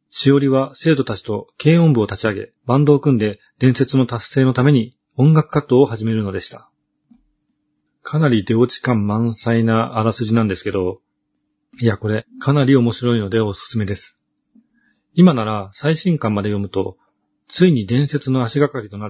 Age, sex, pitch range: 40-59, male, 105-145 Hz